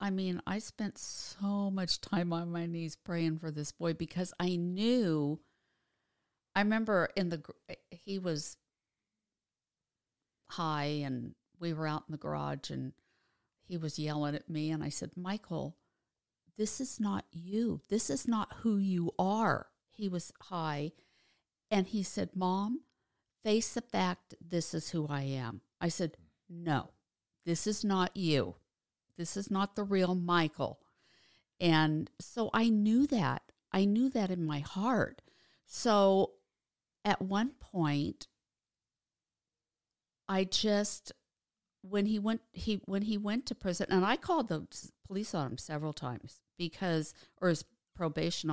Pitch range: 155-200 Hz